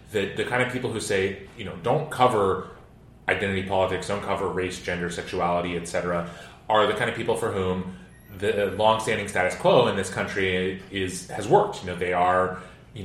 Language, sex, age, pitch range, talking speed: English, male, 30-49, 90-105 Hz, 190 wpm